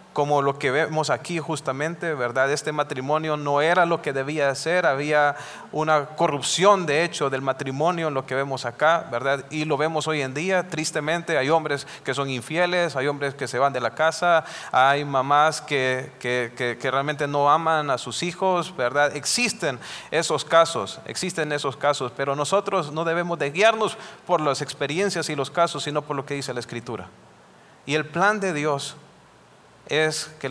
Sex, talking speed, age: male, 185 wpm, 40-59